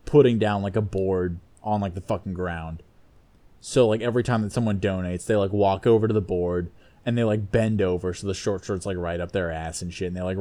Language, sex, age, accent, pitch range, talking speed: English, male, 20-39, American, 95-120 Hz, 250 wpm